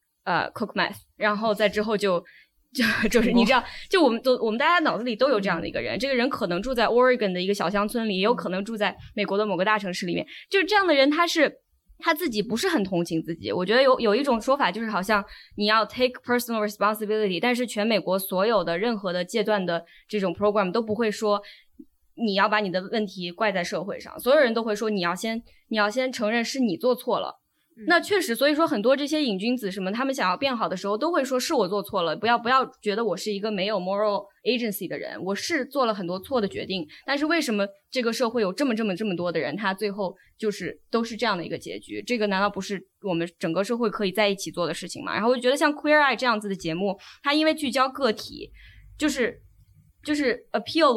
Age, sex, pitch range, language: 20-39, female, 200-255 Hz, Chinese